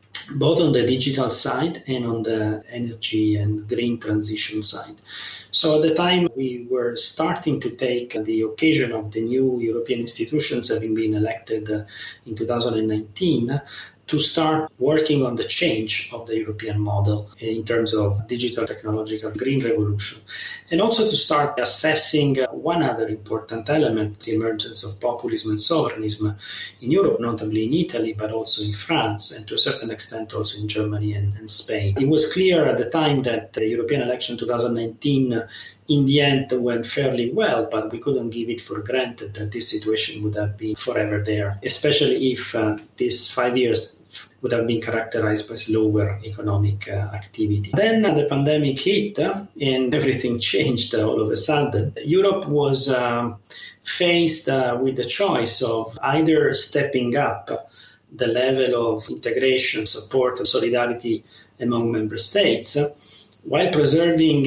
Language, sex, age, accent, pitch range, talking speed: English, male, 30-49, Italian, 110-140 Hz, 160 wpm